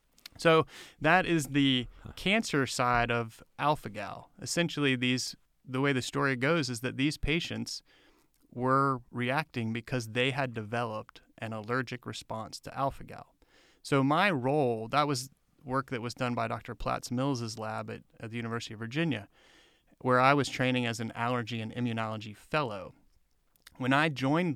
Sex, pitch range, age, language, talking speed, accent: male, 115-145 Hz, 30-49, English, 150 wpm, American